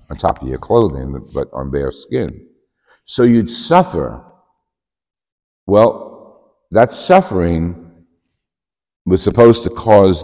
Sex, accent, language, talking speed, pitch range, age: male, American, English, 110 wpm, 70-95 Hz, 60-79